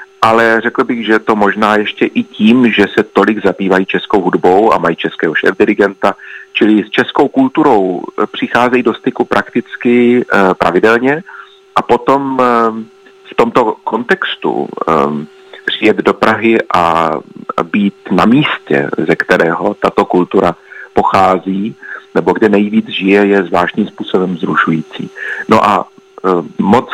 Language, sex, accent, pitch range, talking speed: Czech, male, native, 95-120 Hz, 125 wpm